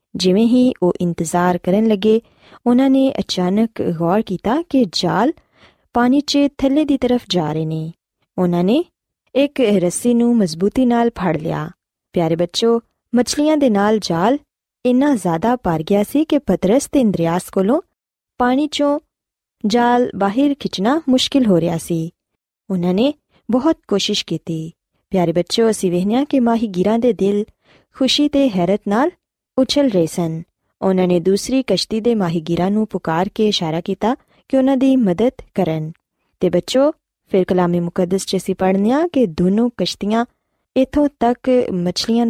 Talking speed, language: 130 wpm, Punjabi